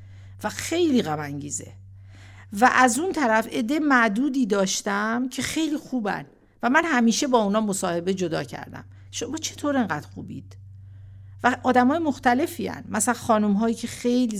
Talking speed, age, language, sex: 130 wpm, 50-69, Persian, female